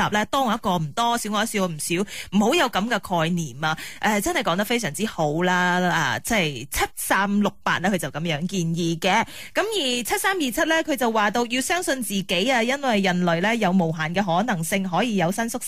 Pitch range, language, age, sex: 180-235 Hz, Chinese, 20-39, female